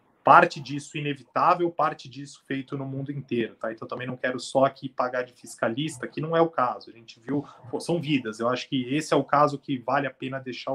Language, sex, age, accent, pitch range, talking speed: Portuguese, male, 20-39, Brazilian, 125-155 Hz, 240 wpm